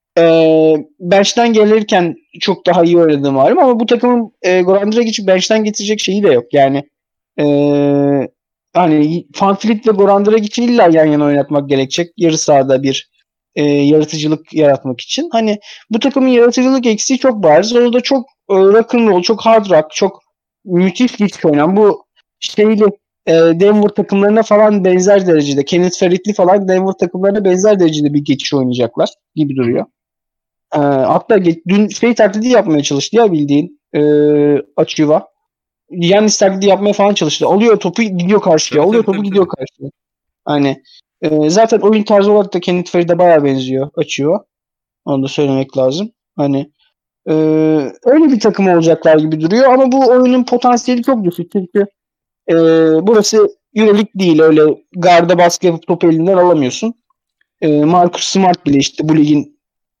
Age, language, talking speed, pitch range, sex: 30-49, Turkish, 150 wpm, 155-215 Hz, male